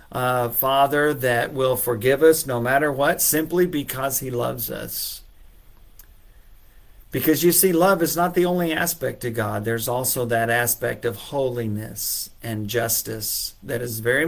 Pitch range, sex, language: 115-140 Hz, male, English